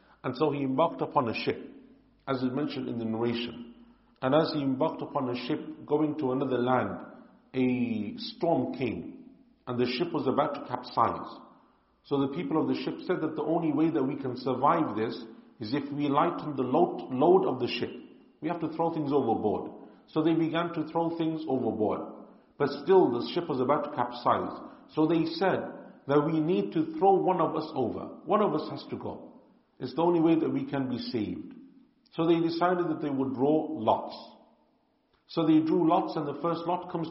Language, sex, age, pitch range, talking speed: English, male, 50-69, 130-170 Hz, 200 wpm